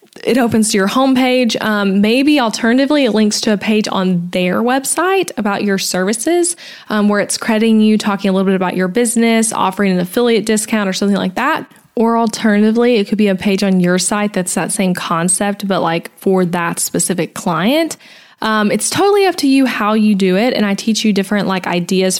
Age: 10-29